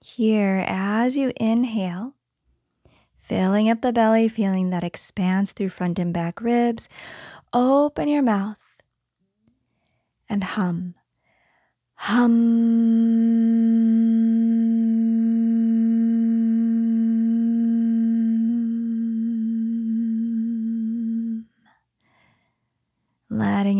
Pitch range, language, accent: 185-230 Hz, English, American